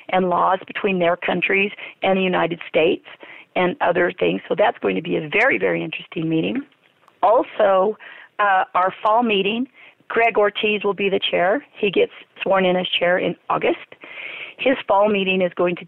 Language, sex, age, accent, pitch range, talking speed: English, female, 40-59, American, 180-225 Hz, 180 wpm